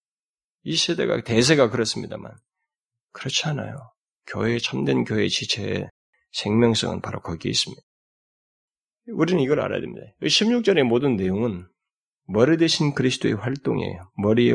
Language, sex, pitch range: Korean, male, 120-170 Hz